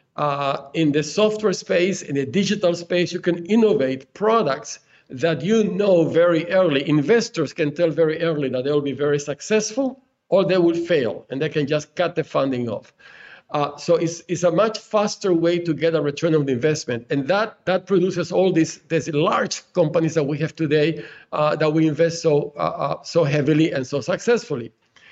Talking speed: 190 wpm